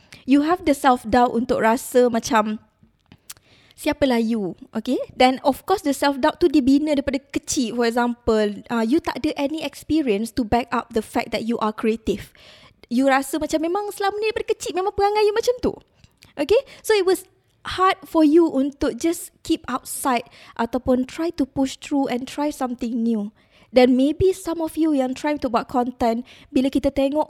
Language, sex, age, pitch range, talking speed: Malay, female, 20-39, 245-320 Hz, 180 wpm